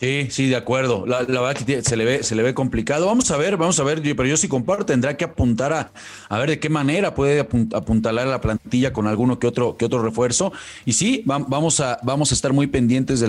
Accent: Mexican